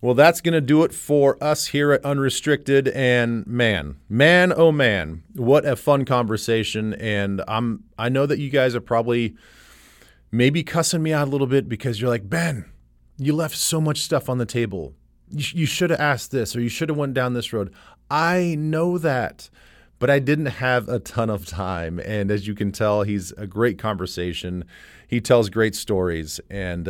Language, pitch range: English, 95-125 Hz